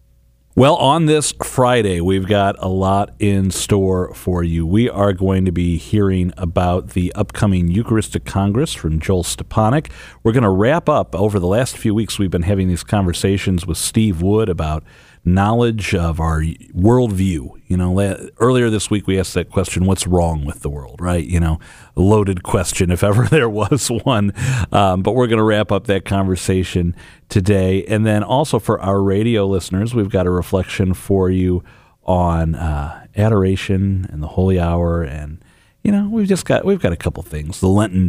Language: English